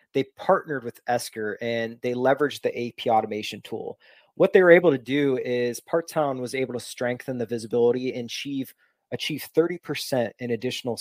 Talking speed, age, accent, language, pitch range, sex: 175 wpm, 30-49, American, English, 115-135 Hz, male